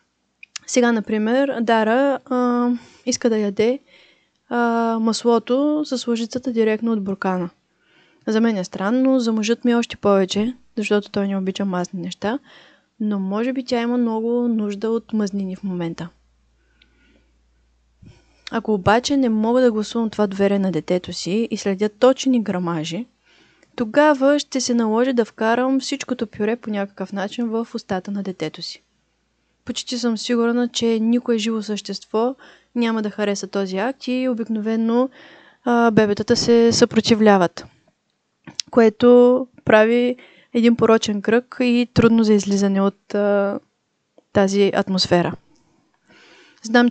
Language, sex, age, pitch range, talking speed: Bulgarian, female, 20-39, 200-240 Hz, 135 wpm